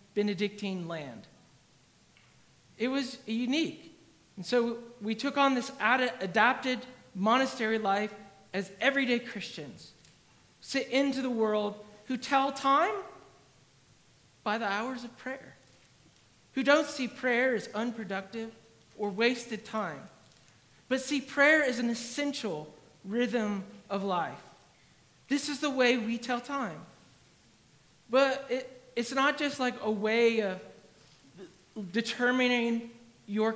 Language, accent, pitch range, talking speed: English, American, 210-265 Hz, 115 wpm